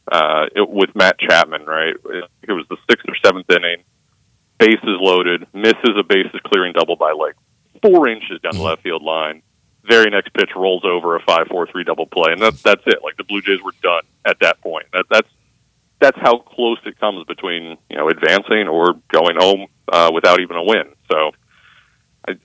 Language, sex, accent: English, male, American